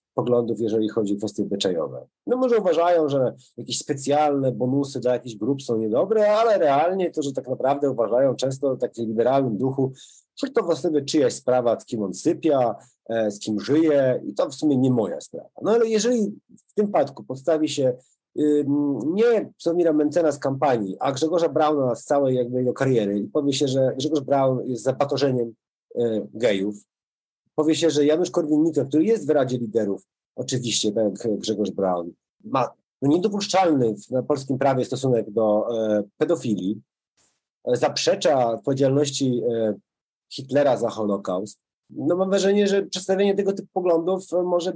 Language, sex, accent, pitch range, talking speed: Polish, male, native, 125-170 Hz, 155 wpm